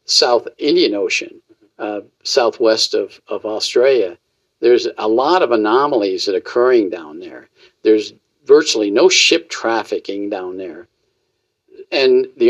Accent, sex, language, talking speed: American, male, English, 130 wpm